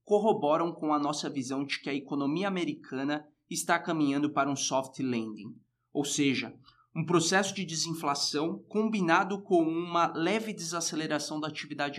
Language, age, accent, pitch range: Portuguese, 20-39, Brazilian, 135-165 Hz